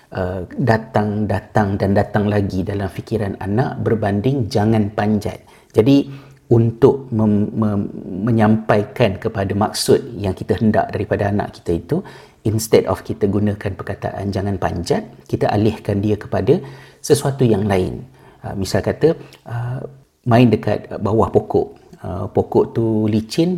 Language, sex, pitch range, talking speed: Malay, male, 100-115 Hz, 130 wpm